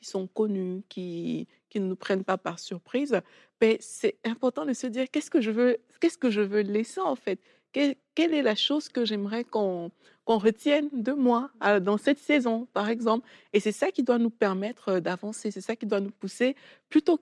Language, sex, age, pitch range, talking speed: French, female, 60-79, 190-240 Hz, 210 wpm